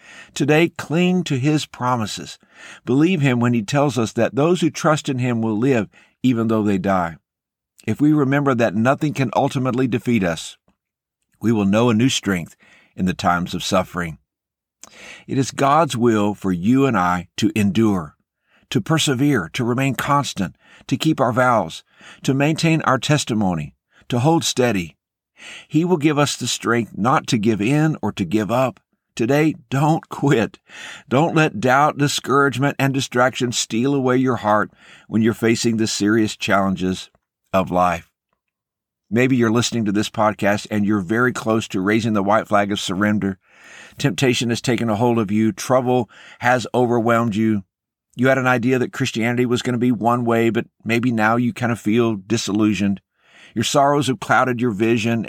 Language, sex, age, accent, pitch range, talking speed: English, male, 50-69, American, 105-135 Hz, 170 wpm